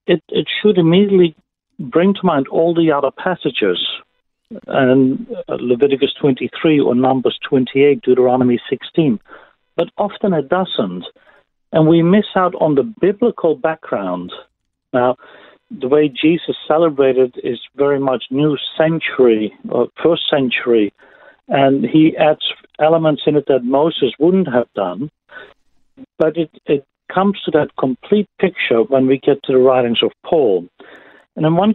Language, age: English, 60-79